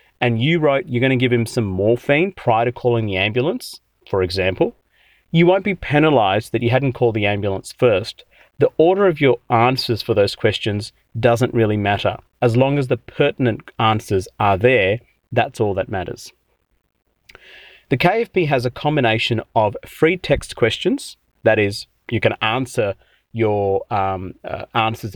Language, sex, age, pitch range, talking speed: English, male, 30-49, 110-140 Hz, 160 wpm